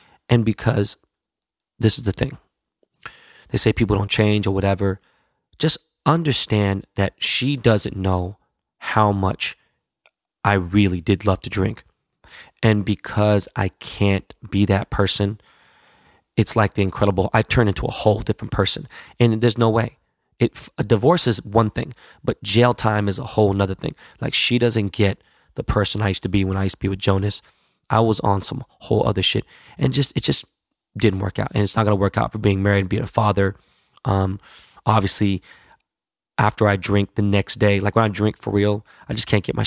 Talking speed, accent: 190 wpm, American